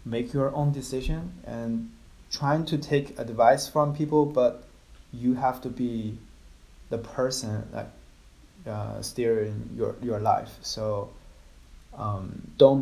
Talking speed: 125 wpm